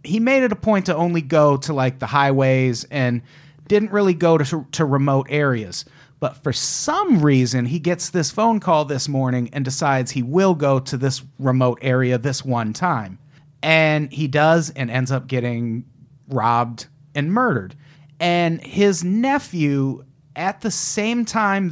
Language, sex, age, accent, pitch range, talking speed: English, male, 40-59, American, 135-165 Hz, 165 wpm